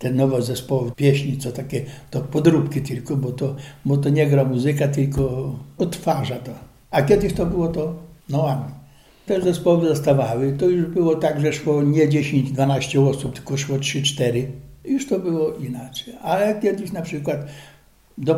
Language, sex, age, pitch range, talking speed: Polish, male, 60-79, 135-165 Hz, 165 wpm